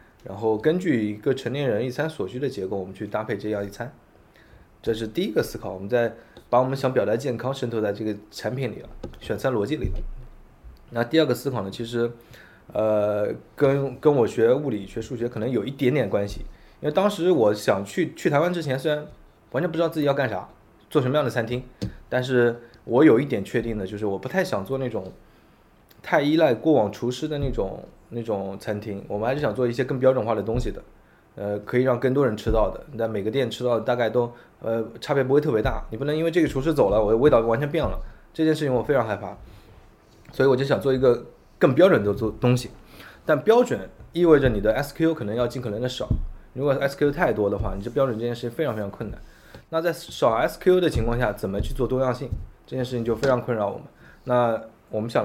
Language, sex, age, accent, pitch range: Chinese, male, 20-39, native, 110-140 Hz